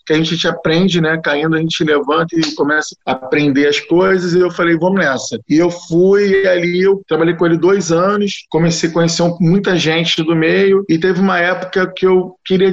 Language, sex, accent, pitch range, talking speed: Portuguese, male, Brazilian, 155-185 Hz, 210 wpm